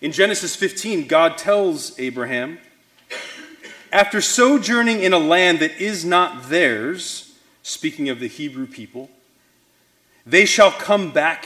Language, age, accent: English, 30-49, American